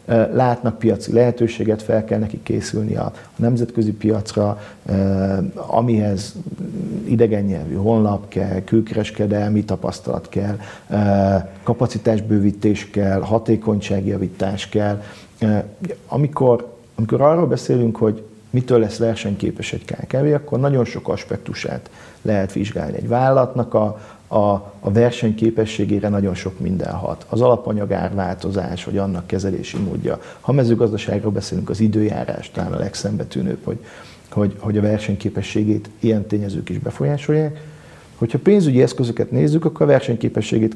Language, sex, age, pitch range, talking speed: Hungarian, male, 50-69, 100-115 Hz, 120 wpm